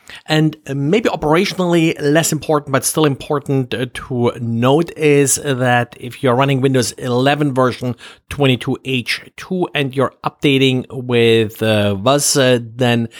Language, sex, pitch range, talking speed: English, male, 120-150 Hz, 120 wpm